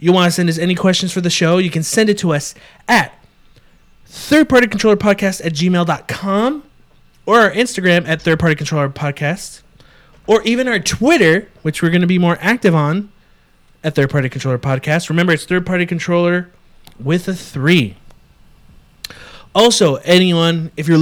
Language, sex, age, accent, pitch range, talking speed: English, male, 30-49, American, 150-200 Hz, 140 wpm